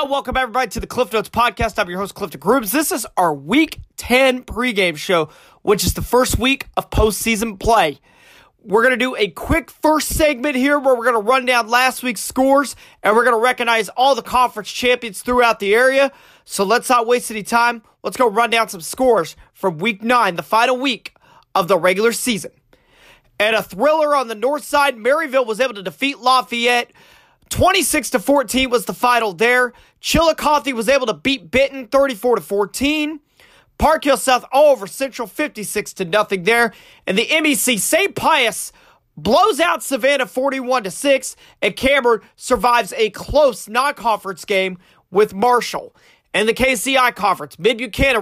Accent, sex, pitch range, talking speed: American, male, 220-270 Hz, 170 wpm